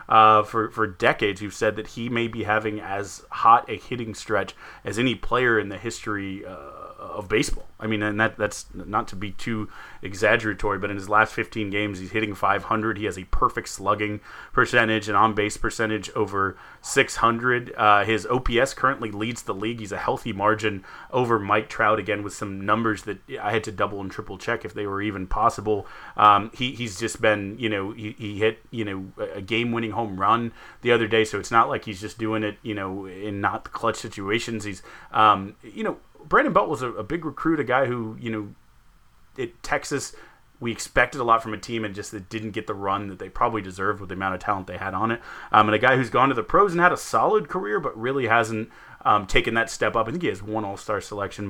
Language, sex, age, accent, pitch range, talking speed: English, male, 30-49, American, 100-115 Hz, 225 wpm